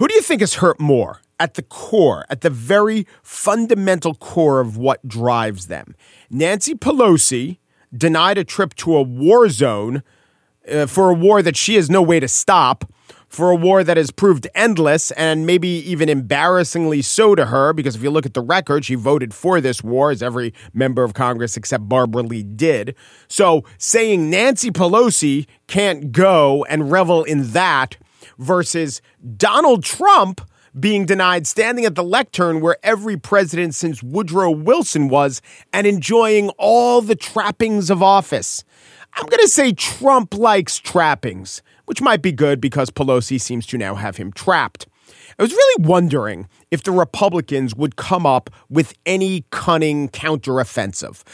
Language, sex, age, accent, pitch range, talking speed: English, male, 40-59, American, 130-195 Hz, 160 wpm